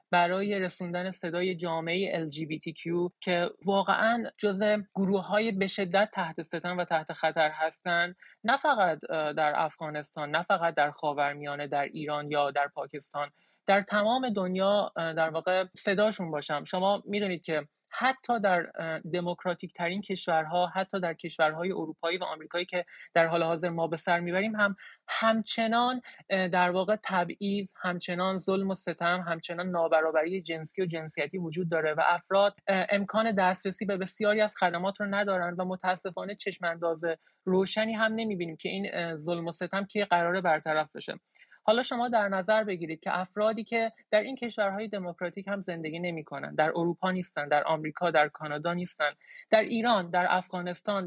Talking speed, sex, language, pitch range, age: 155 wpm, male, English, 165-200 Hz, 30-49